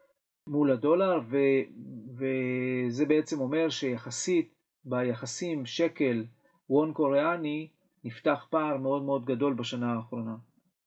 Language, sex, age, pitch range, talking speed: Hebrew, male, 40-59, 120-145 Hz, 100 wpm